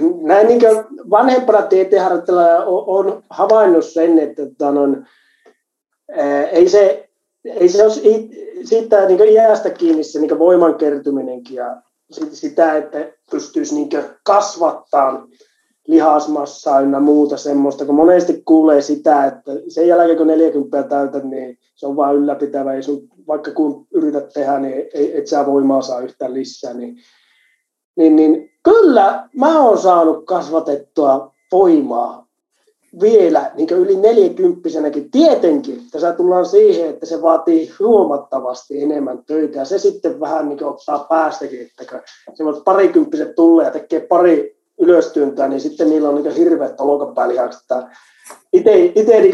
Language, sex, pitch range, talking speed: Finnish, male, 145-215 Hz, 135 wpm